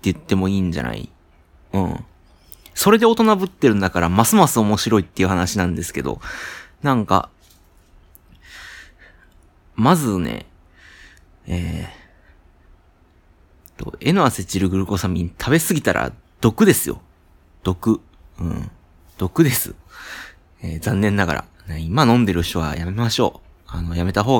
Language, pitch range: Japanese, 85-115 Hz